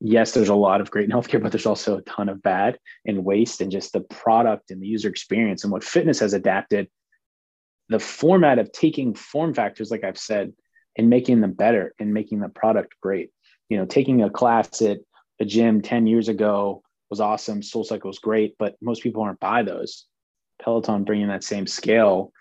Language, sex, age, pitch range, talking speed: English, male, 20-39, 100-115 Hz, 200 wpm